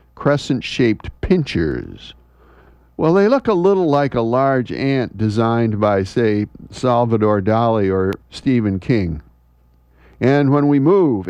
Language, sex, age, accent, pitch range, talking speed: English, male, 50-69, American, 95-135 Hz, 120 wpm